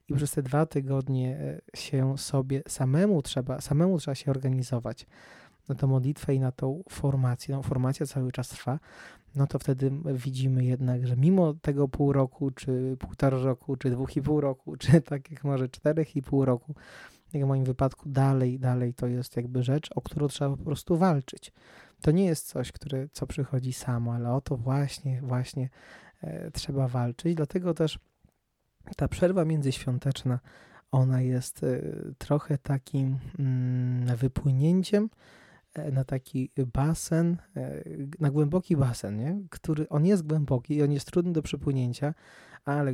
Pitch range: 130-150 Hz